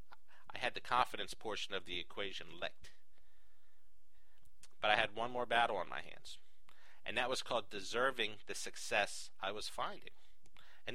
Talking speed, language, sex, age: 160 wpm, English, male, 50-69